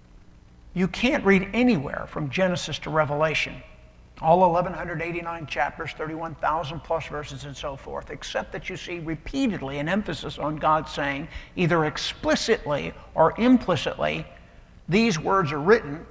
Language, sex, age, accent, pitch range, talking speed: English, male, 60-79, American, 135-190 Hz, 130 wpm